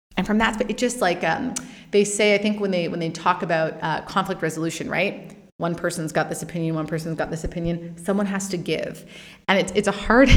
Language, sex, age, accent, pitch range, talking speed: English, female, 30-49, American, 165-195 Hz, 245 wpm